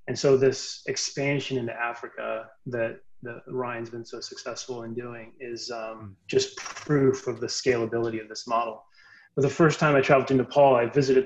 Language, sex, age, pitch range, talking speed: English, male, 30-49, 130-145 Hz, 180 wpm